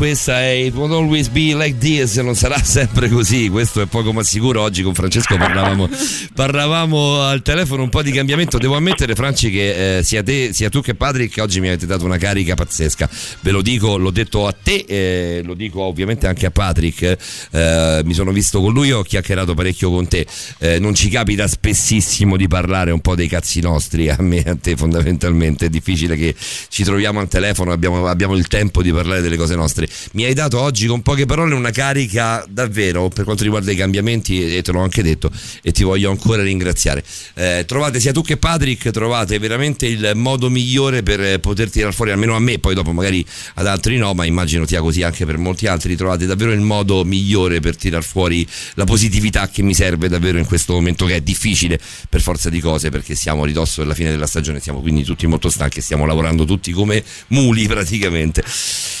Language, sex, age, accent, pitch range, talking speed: Italian, male, 50-69, native, 85-115 Hz, 210 wpm